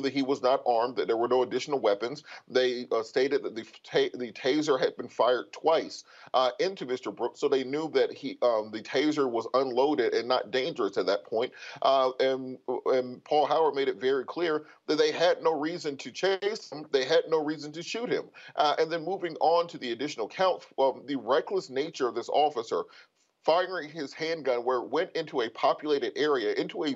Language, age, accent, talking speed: English, 30-49, American, 210 wpm